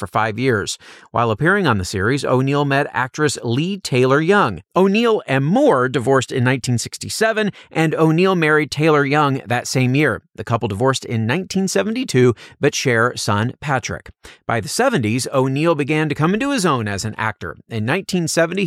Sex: male